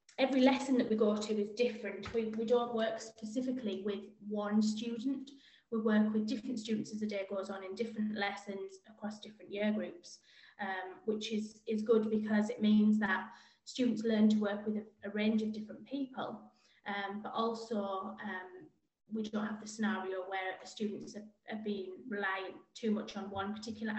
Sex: female